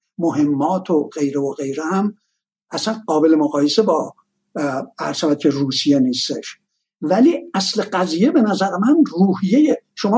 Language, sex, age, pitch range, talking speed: Persian, male, 60-79, 165-245 Hz, 130 wpm